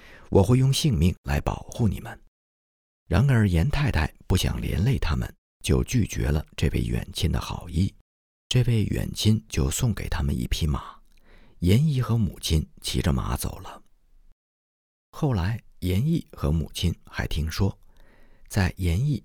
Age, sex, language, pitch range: 50-69, male, Chinese, 75-110 Hz